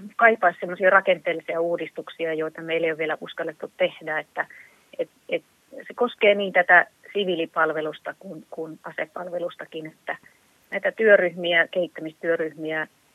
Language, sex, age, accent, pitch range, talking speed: Finnish, female, 30-49, native, 165-190 Hz, 120 wpm